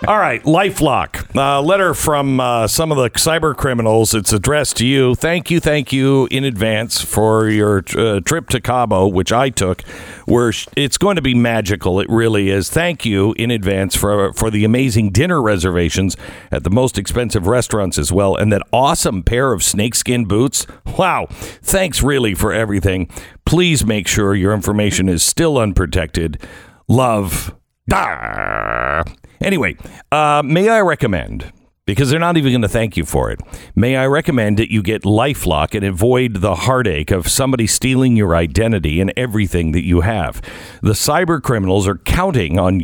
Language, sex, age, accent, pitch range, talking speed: English, male, 60-79, American, 100-135 Hz, 170 wpm